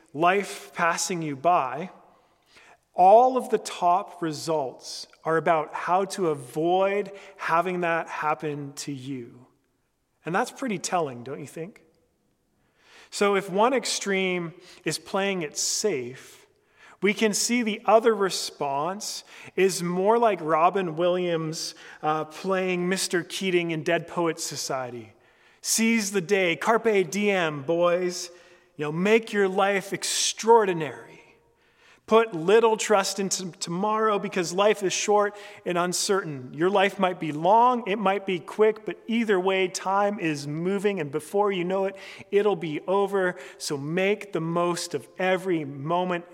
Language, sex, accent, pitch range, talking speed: English, male, American, 165-200 Hz, 135 wpm